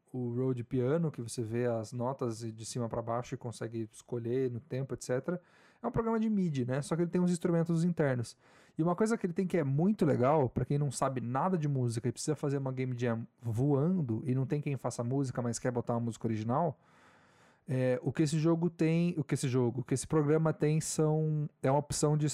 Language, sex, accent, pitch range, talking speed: Portuguese, male, Brazilian, 125-155 Hz, 235 wpm